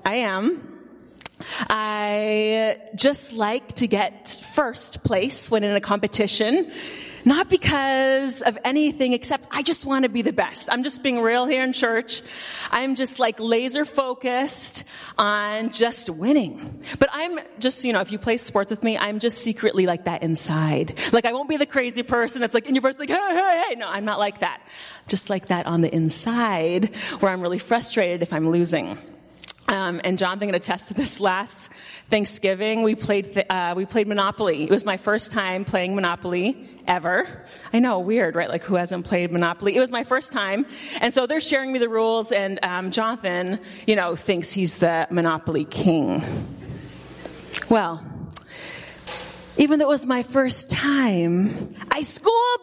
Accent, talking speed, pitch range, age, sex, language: American, 175 wpm, 190-260 Hz, 30-49, female, English